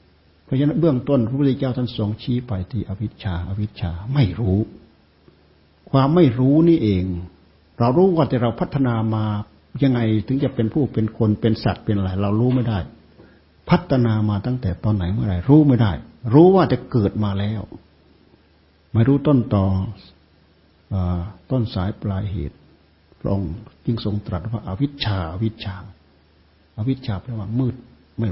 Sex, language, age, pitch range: male, Thai, 60-79, 85-120 Hz